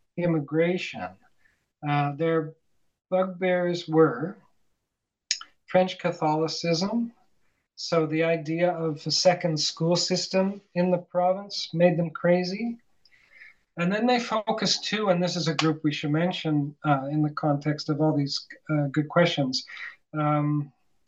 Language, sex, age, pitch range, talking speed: English, male, 40-59, 150-180 Hz, 130 wpm